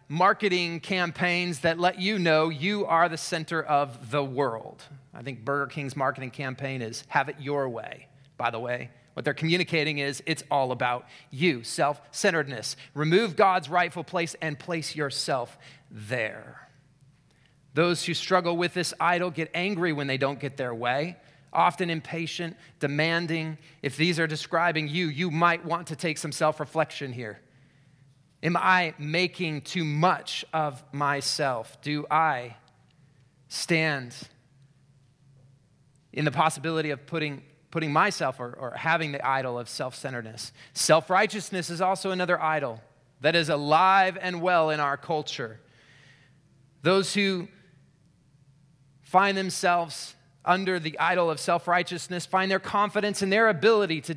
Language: English